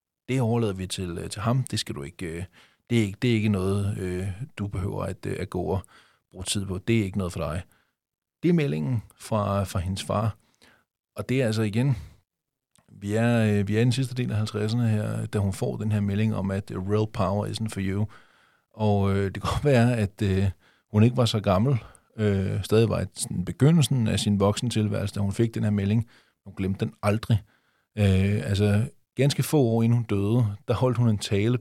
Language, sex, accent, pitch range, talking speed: Danish, male, native, 95-115 Hz, 200 wpm